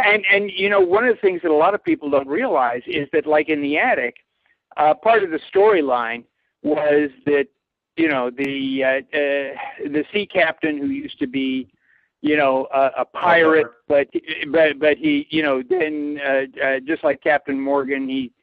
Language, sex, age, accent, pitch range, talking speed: English, male, 50-69, American, 140-210 Hz, 190 wpm